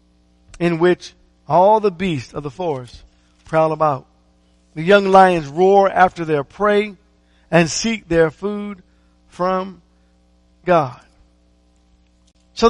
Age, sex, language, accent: 50-69, male, English, American